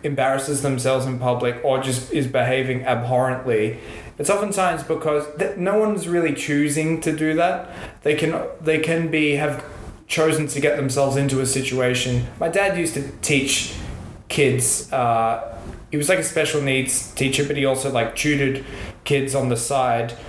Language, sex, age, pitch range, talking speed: English, male, 20-39, 125-155 Hz, 165 wpm